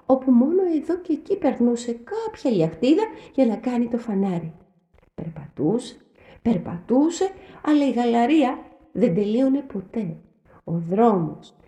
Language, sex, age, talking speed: Greek, female, 30-49, 120 wpm